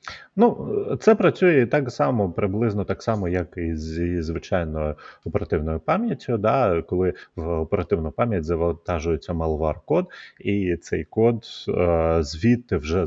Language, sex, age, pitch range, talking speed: Ukrainian, male, 30-49, 85-110 Hz, 125 wpm